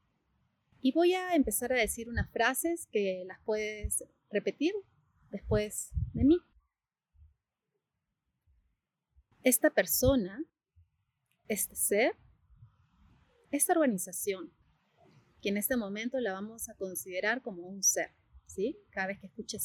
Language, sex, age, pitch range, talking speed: Spanish, female, 30-49, 175-255 Hz, 110 wpm